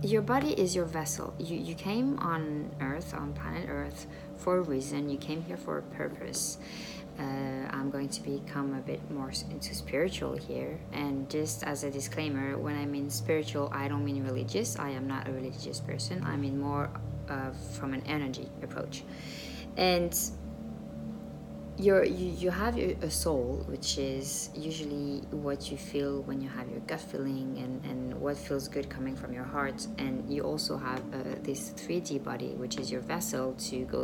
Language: English